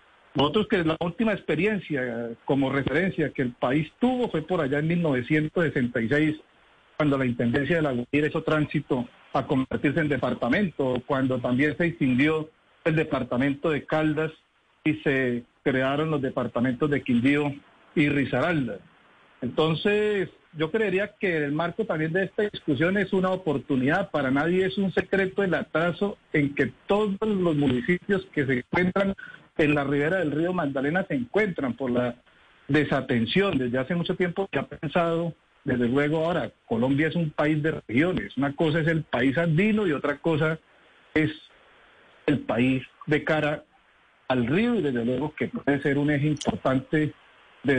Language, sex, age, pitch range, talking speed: Spanish, male, 50-69, 135-170 Hz, 160 wpm